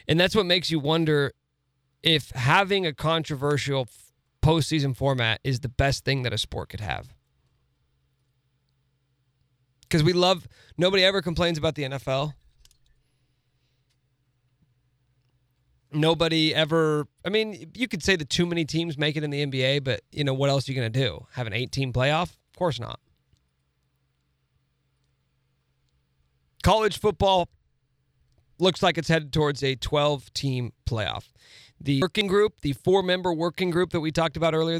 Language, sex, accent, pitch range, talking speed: English, male, American, 125-160 Hz, 150 wpm